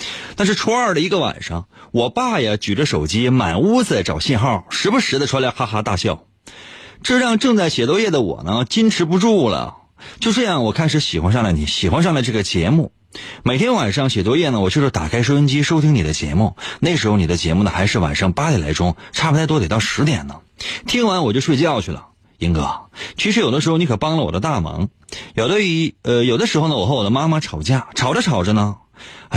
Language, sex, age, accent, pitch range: Chinese, male, 30-49, native, 100-160 Hz